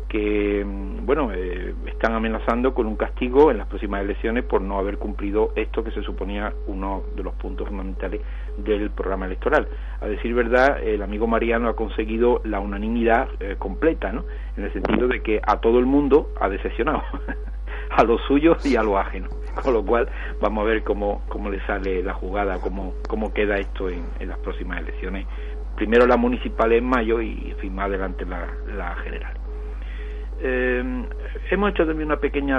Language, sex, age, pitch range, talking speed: Spanish, male, 50-69, 100-125 Hz, 180 wpm